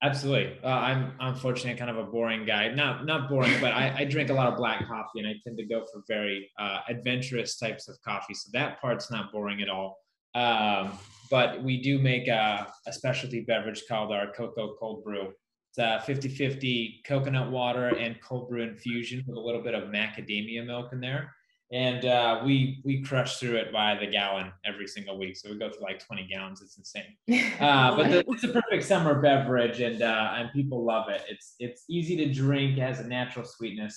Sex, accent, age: male, American, 20-39